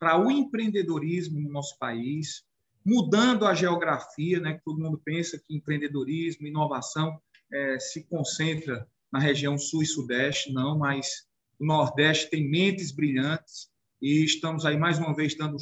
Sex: male